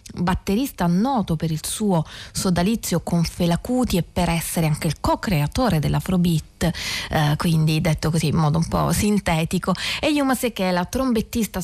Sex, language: female, Italian